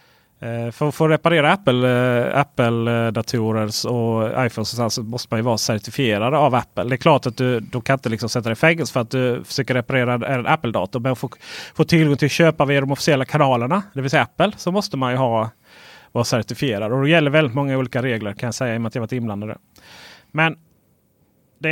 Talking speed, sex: 230 wpm, male